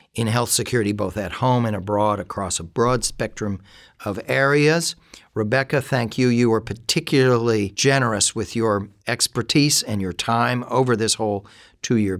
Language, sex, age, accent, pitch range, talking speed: English, male, 50-69, American, 105-125 Hz, 150 wpm